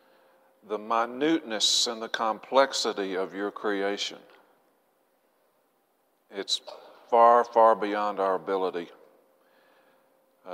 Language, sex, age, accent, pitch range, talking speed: English, male, 40-59, American, 105-125 Hz, 85 wpm